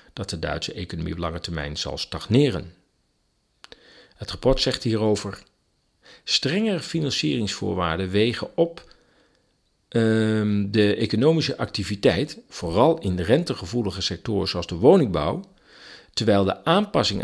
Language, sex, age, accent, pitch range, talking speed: Dutch, male, 50-69, Dutch, 95-155 Hz, 110 wpm